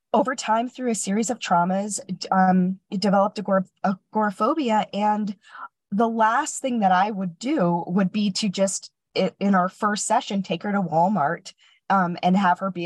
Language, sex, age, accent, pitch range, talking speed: English, female, 20-39, American, 180-210 Hz, 175 wpm